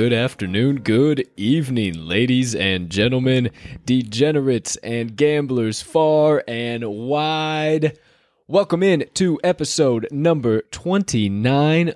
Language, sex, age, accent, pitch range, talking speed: English, male, 20-39, American, 100-140 Hz, 95 wpm